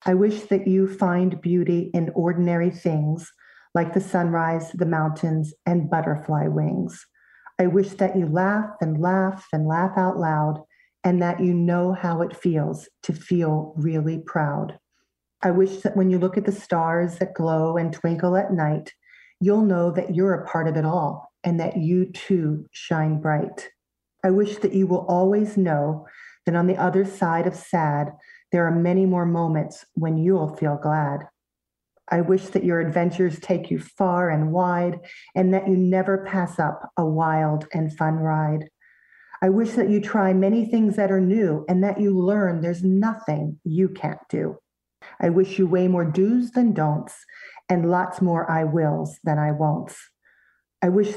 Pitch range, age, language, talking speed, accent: 160-190 Hz, 40-59, English, 175 wpm, American